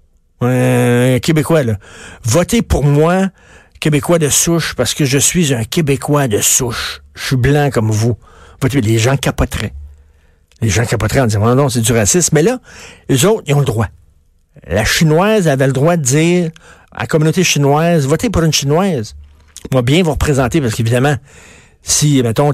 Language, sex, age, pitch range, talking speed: French, male, 50-69, 105-150 Hz, 185 wpm